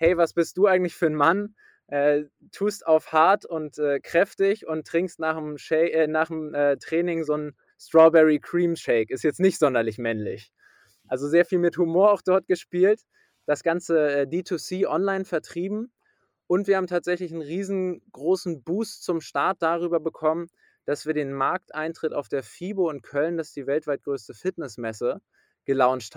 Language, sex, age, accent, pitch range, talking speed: German, male, 20-39, German, 150-180 Hz, 165 wpm